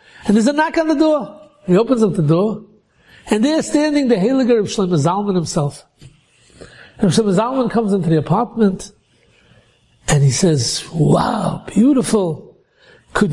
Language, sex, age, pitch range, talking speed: English, male, 60-79, 180-245 Hz, 155 wpm